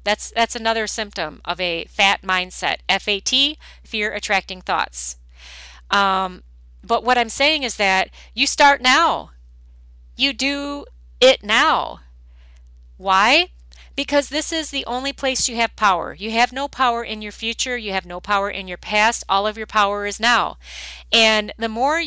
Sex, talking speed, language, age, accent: female, 160 wpm, English, 40-59, American